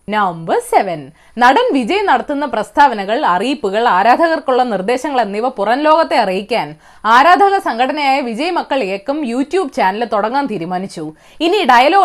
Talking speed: 105 wpm